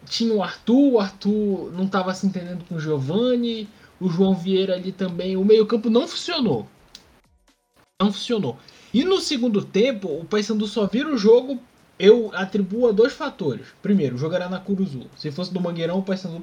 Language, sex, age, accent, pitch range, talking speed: Portuguese, male, 20-39, Brazilian, 165-230 Hz, 180 wpm